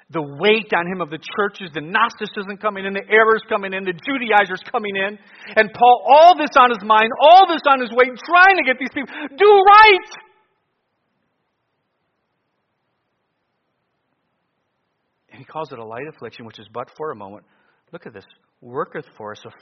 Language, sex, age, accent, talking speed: English, male, 50-69, American, 175 wpm